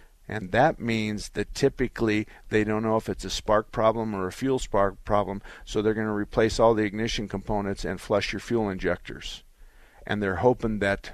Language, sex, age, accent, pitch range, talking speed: English, male, 50-69, American, 95-110 Hz, 195 wpm